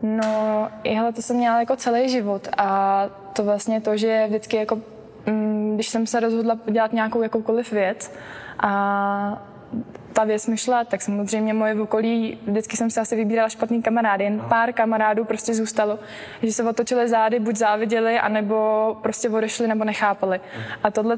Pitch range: 205-230 Hz